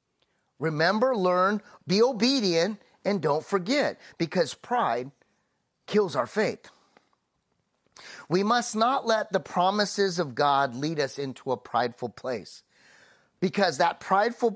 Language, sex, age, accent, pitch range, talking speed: English, male, 30-49, American, 130-180 Hz, 120 wpm